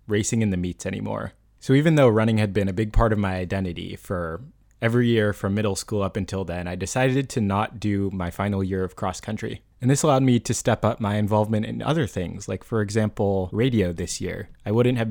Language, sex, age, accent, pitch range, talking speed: English, male, 20-39, American, 95-115 Hz, 230 wpm